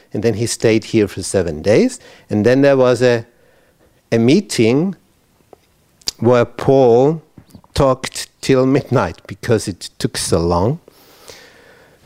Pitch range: 110-150 Hz